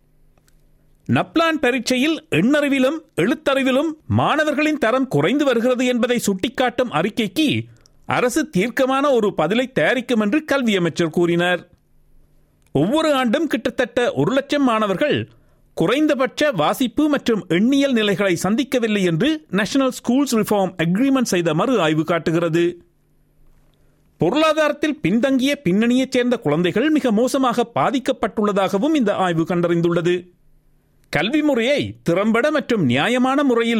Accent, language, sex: native, Tamil, male